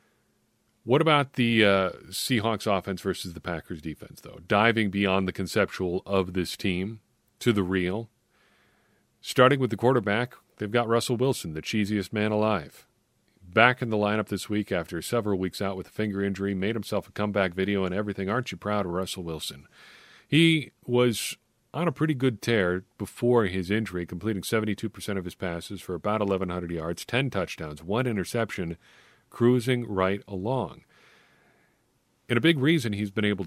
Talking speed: 165 wpm